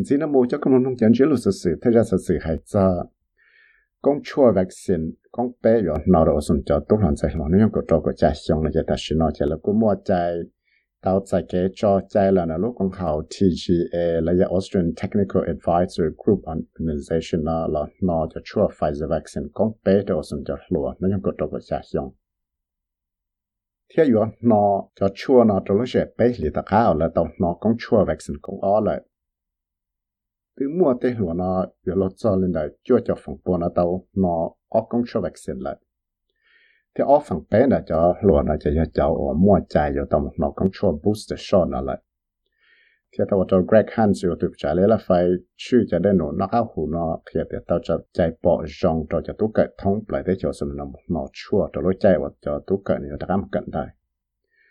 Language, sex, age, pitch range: English, male, 60-79, 80-105 Hz